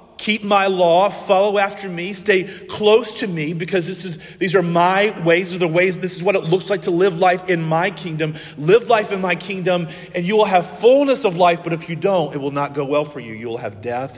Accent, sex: American, male